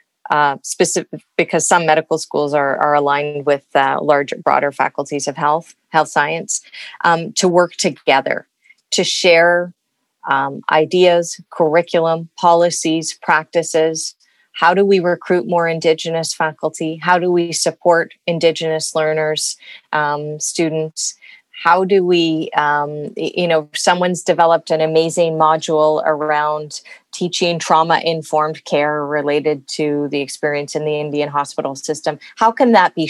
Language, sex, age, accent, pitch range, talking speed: English, female, 30-49, American, 150-170 Hz, 130 wpm